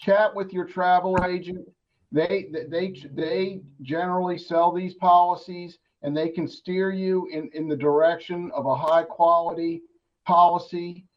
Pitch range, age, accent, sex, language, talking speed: 155-185 Hz, 50-69, American, male, English, 140 wpm